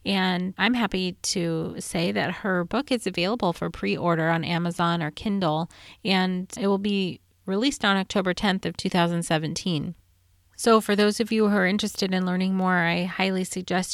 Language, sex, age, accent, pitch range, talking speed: English, female, 30-49, American, 175-210 Hz, 170 wpm